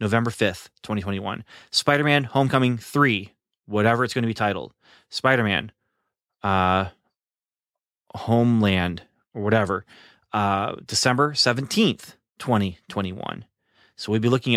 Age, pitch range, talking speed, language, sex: 30-49, 95-120 Hz, 100 wpm, English, male